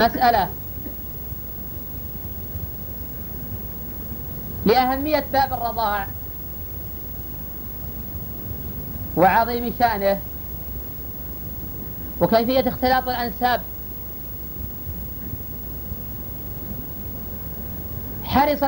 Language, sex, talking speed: Arabic, female, 30 wpm